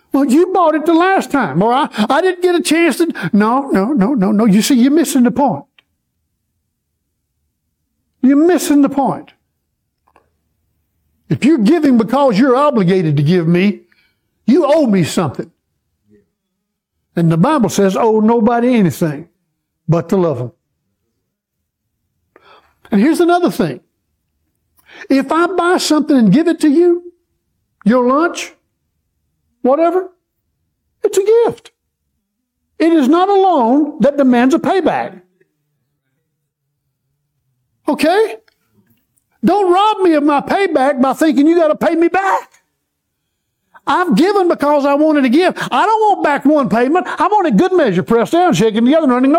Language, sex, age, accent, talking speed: English, male, 60-79, American, 145 wpm